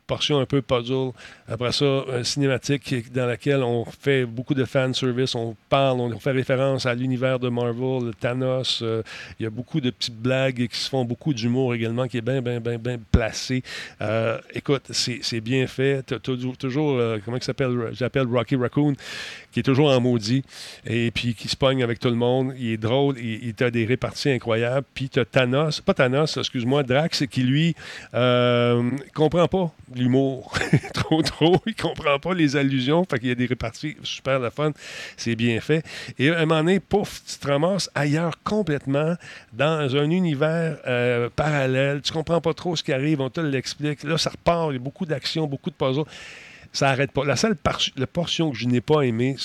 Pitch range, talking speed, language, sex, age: 120-145 Hz, 200 wpm, French, male, 40-59